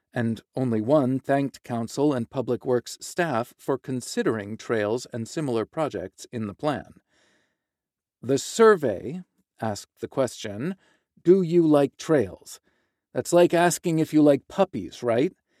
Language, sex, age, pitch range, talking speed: English, male, 40-59, 115-155 Hz, 135 wpm